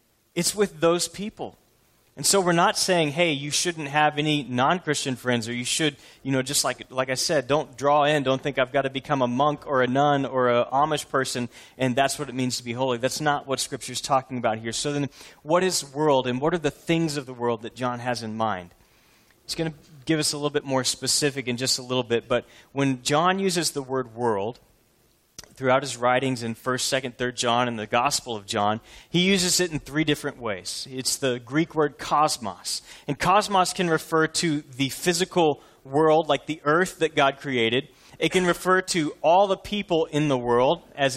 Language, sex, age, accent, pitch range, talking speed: English, male, 30-49, American, 125-160 Hz, 220 wpm